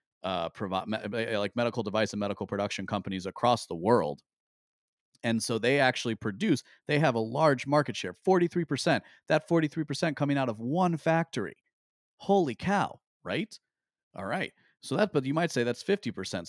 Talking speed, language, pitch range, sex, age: 175 wpm, English, 105-145 Hz, male, 40-59